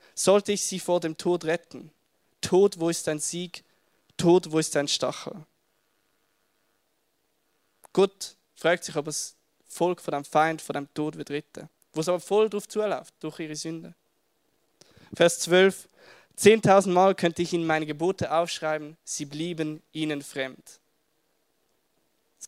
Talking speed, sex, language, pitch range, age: 145 wpm, male, German, 155-185 Hz, 20-39